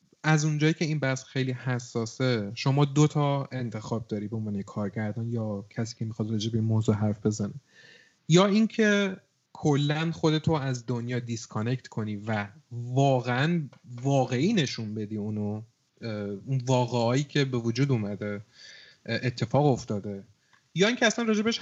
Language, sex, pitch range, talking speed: Persian, male, 120-155 Hz, 140 wpm